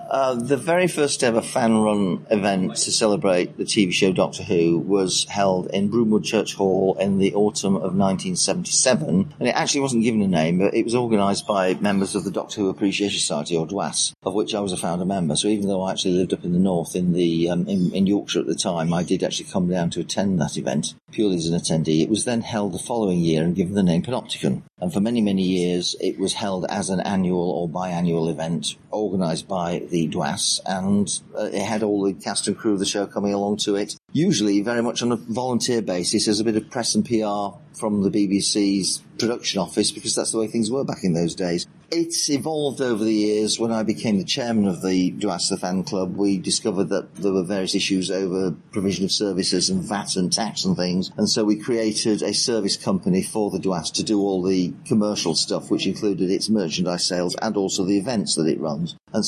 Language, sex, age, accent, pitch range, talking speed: English, male, 40-59, British, 95-110 Hz, 225 wpm